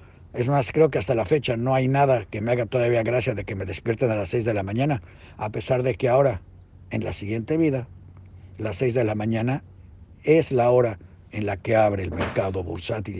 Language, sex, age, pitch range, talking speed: Spanish, male, 60-79, 100-135 Hz, 225 wpm